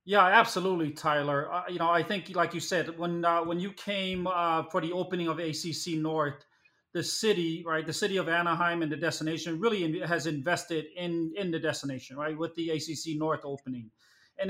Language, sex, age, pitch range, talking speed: English, male, 30-49, 155-180 Hz, 200 wpm